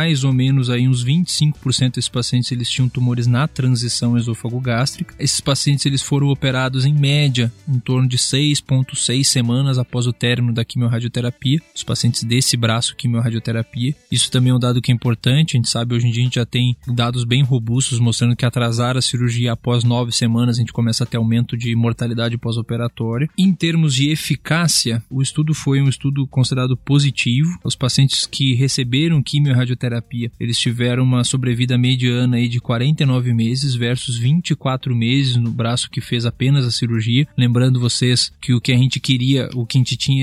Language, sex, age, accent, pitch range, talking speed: Portuguese, male, 20-39, Brazilian, 120-135 Hz, 185 wpm